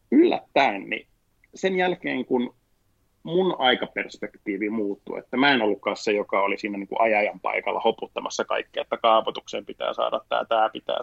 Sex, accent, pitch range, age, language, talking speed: male, native, 110-140 Hz, 30-49, Finnish, 160 wpm